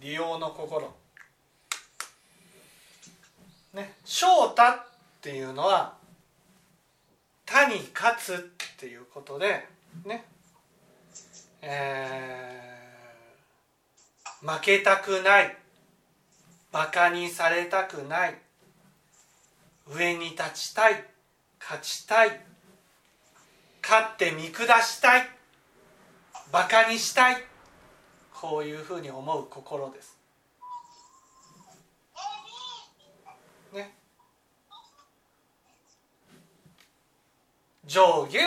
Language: Japanese